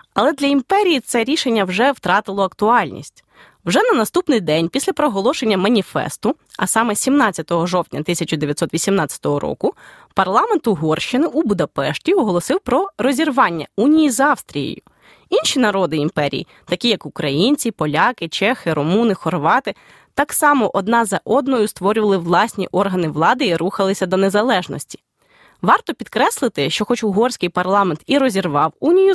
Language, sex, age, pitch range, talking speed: Ukrainian, female, 20-39, 180-255 Hz, 130 wpm